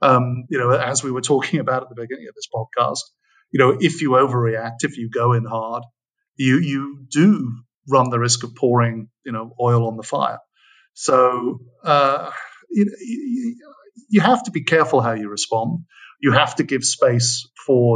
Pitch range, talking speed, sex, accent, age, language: 120-140 Hz, 185 wpm, male, British, 50-69, English